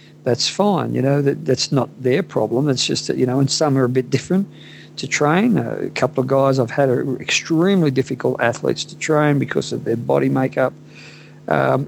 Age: 50-69